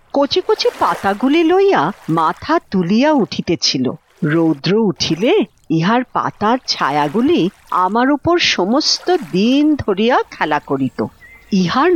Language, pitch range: Bengali, 190-310 Hz